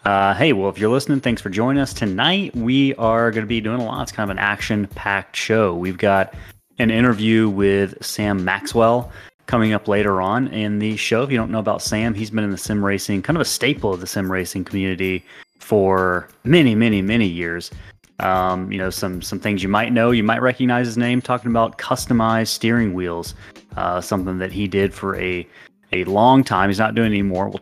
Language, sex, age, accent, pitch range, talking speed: English, male, 30-49, American, 95-120 Hz, 215 wpm